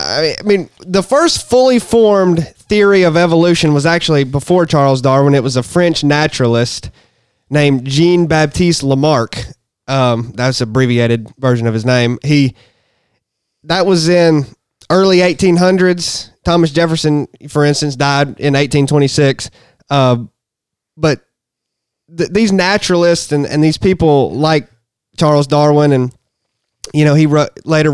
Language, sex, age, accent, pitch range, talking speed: English, male, 20-39, American, 135-165 Hz, 130 wpm